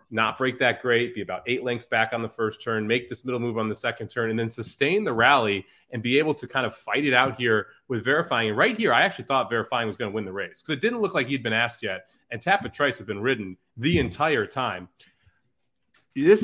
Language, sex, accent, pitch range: English, male, American, 115-155 Hz